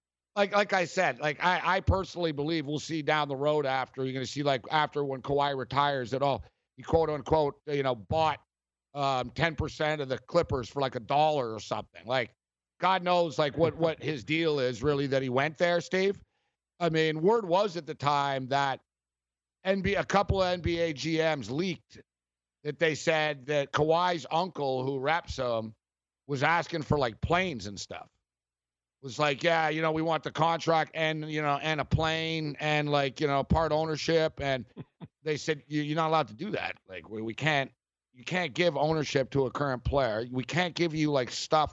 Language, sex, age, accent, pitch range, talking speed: English, male, 50-69, American, 130-160 Hz, 195 wpm